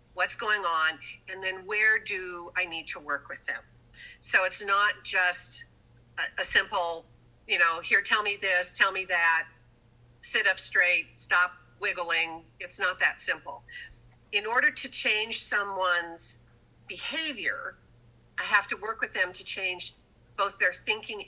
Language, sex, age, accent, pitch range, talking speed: English, female, 50-69, American, 175-220 Hz, 150 wpm